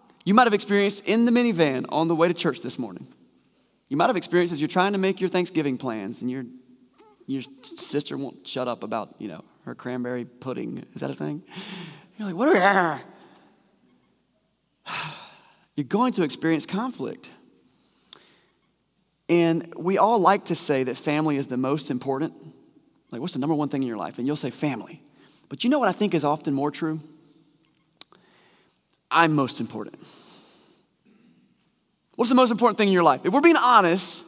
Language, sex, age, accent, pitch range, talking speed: English, male, 30-49, American, 150-195 Hz, 180 wpm